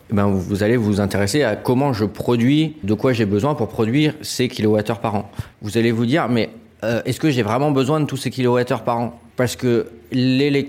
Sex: male